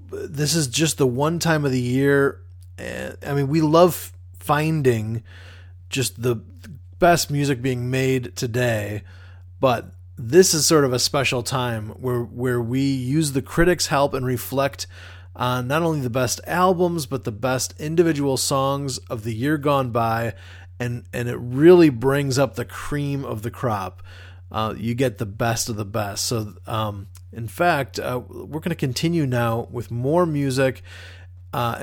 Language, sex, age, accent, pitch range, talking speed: English, male, 30-49, American, 105-140 Hz, 165 wpm